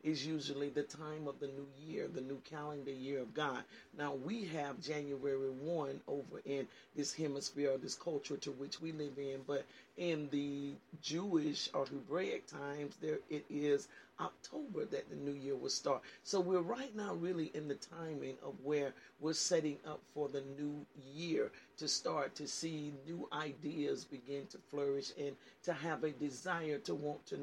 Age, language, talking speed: 40-59, English, 180 wpm